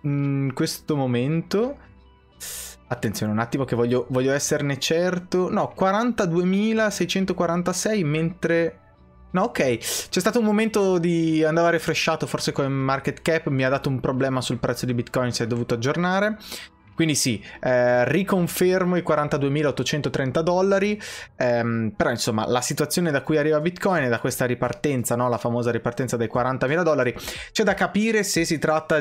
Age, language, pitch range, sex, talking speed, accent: 20-39, Italian, 125-165 Hz, male, 150 wpm, native